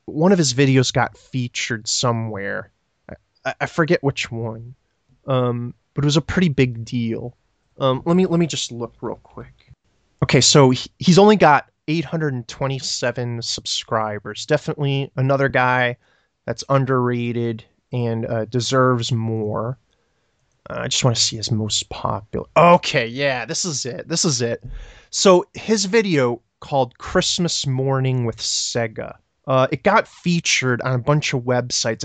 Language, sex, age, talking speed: English, male, 20-39, 145 wpm